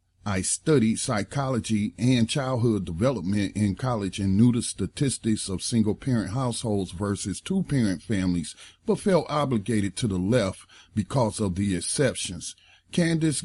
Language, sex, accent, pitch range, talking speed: English, male, American, 100-130 Hz, 130 wpm